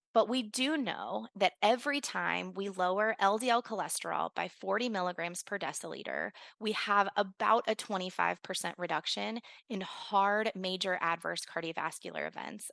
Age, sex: 20-39, female